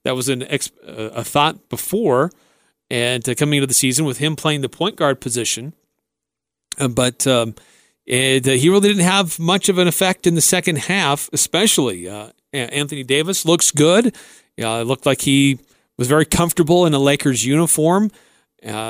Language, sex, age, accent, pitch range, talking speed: English, male, 40-59, American, 130-165 Hz, 180 wpm